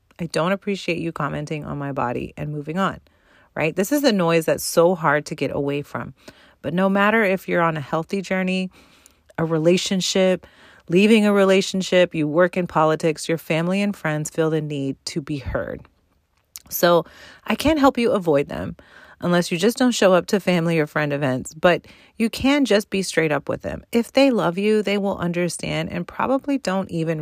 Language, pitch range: English, 155-195 Hz